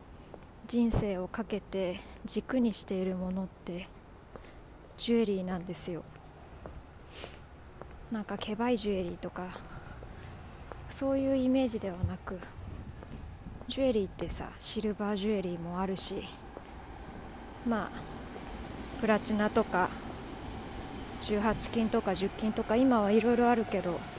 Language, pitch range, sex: Japanese, 180-225 Hz, female